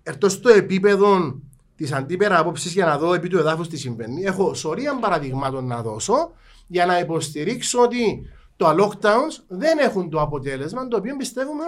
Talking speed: 165 wpm